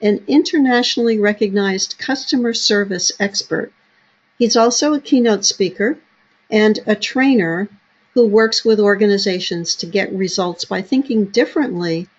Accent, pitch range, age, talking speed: American, 195-230 Hz, 60-79, 120 wpm